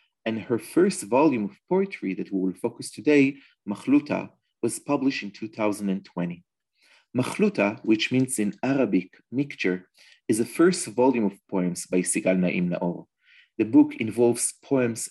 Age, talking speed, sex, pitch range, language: 40-59, 145 wpm, male, 100-135 Hz, English